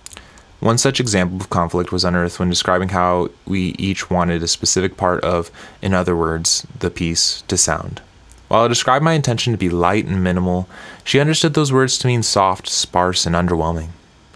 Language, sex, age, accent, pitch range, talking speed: English, male, 20-39, American, 85-105 Hz, 185 wpm